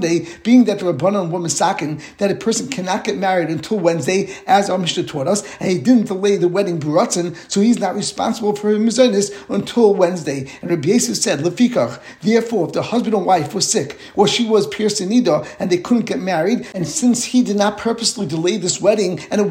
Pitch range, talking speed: 175-215 Hz, 210 wpm